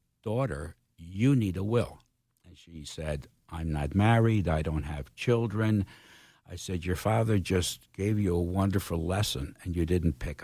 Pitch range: 85-115 Hz